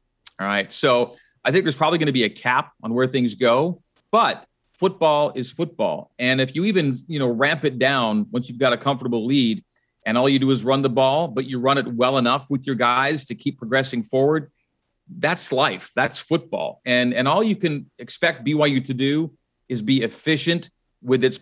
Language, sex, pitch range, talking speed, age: English, male, 120-150 Hz, 205 wpm, 40-59